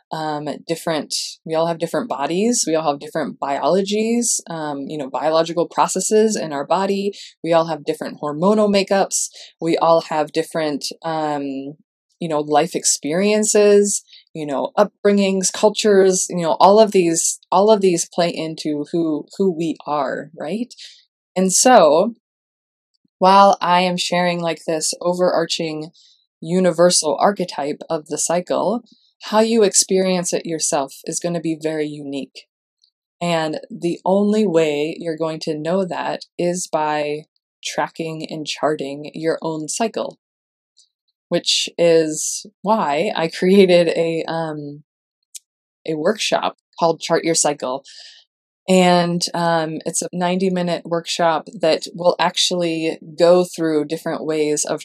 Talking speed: 135 wpm